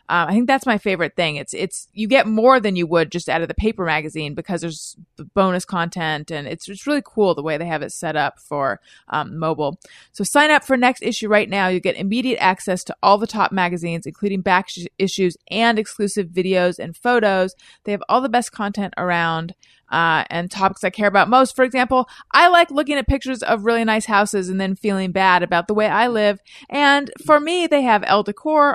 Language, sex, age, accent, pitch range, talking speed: English, female, 30-49, American, 175-235 Hz, 220 wpm